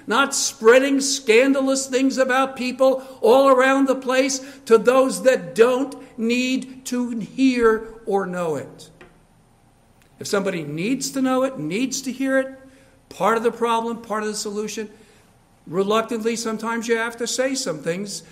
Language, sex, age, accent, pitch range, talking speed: English, male, 60-79, American, 150-235 Hz, 150 wpm